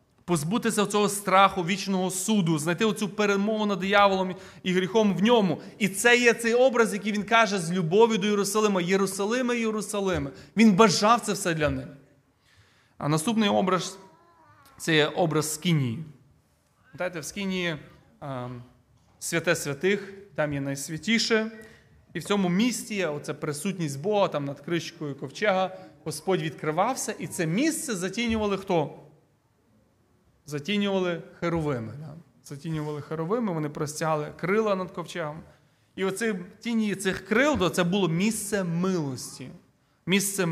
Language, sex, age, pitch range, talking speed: Ukrainian, male, 30-49, 155-205 Hz, 135 wpm